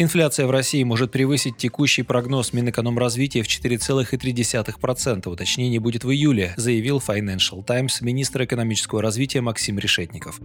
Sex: male